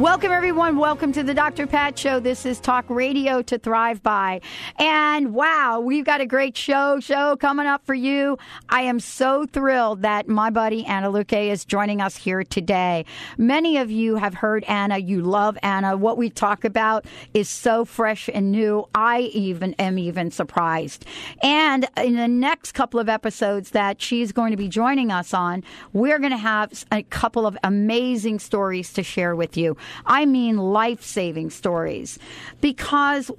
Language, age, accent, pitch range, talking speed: English, 50-69, American, 195-250 Hz, 175 wpm